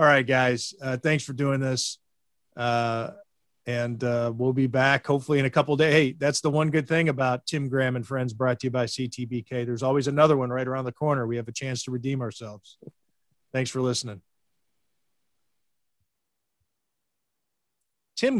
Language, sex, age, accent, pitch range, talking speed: English, male, 40-59, American, 135-190 Hz, 175 wpm